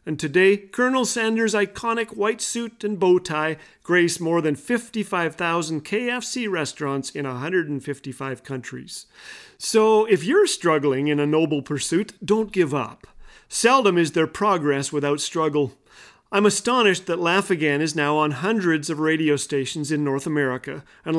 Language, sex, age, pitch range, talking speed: English, male, 40-59, 150-210 Hz, 145 wpm